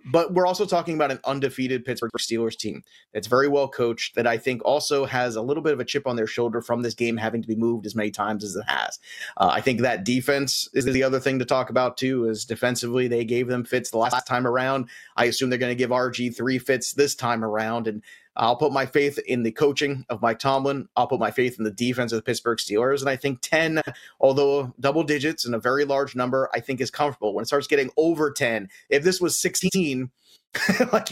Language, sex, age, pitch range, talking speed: English, male, 30-49, 120-150 Hz, 240 wpm